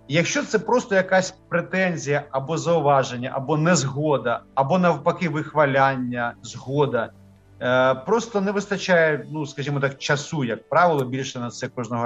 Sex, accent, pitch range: male, native, 135-180 Hz